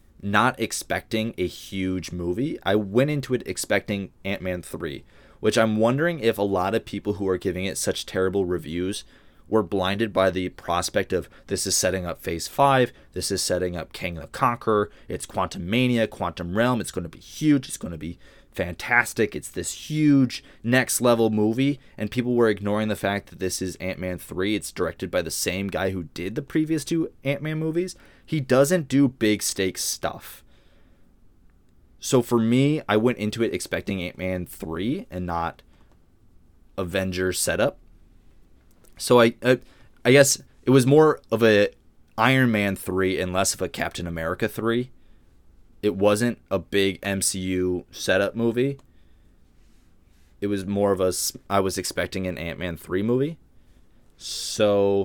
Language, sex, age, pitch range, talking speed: English, male, 20-39, 90-120 Hz, 165 wpm